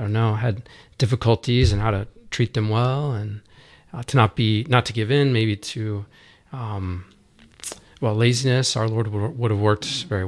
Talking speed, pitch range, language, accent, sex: 180 wpm, 105-125 Hz, English, American, male